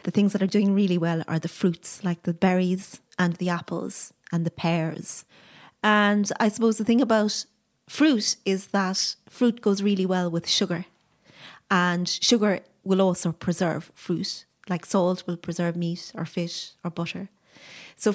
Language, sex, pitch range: English, female, 180-215 Hz